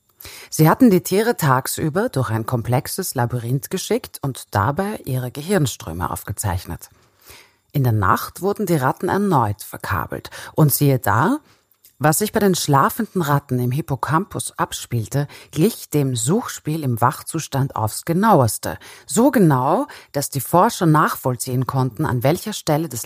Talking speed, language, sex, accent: 140 wpm, German, female, German